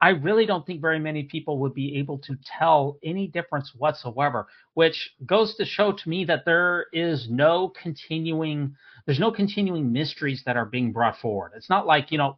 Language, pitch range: English, 130-165 Hz